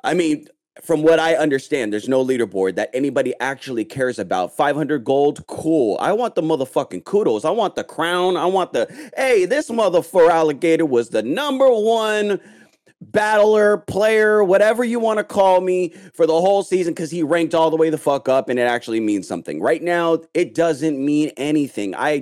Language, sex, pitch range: English, male, 155-215 Hz